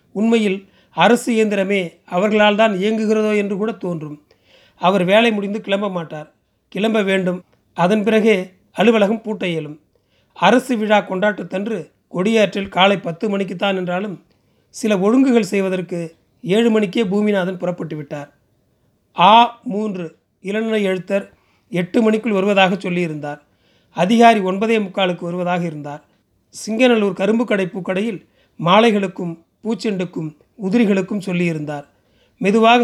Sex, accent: male, native